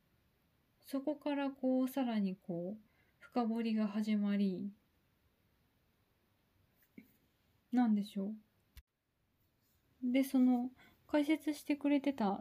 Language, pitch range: Japanese, 190-270 Hz